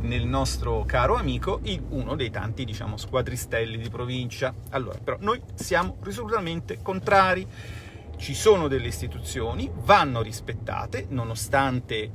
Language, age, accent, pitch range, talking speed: Italian, 40-59, native, 100-125 Hz, 125 wpm